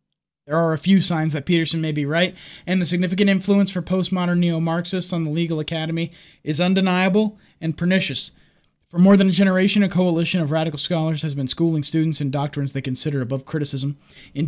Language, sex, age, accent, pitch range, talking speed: English, male, 20-39, American, 150-175 Hz, 190 wpm